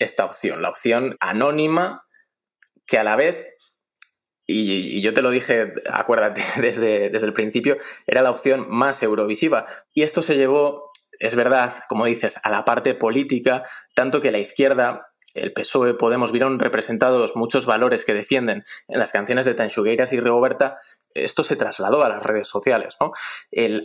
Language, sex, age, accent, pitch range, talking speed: Spanish, male, 20-39, Spanish, 115-140 Hz, 165 wpm